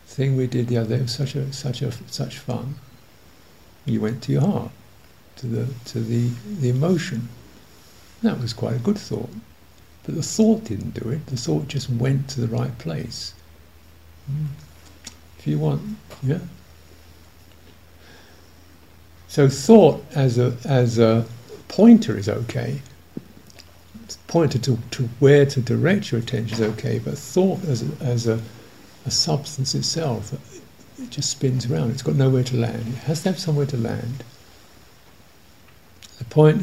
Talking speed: 155 wpm